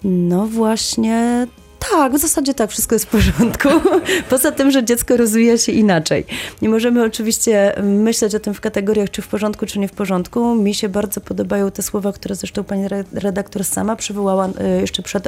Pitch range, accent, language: 195-225 Hz, native, Polish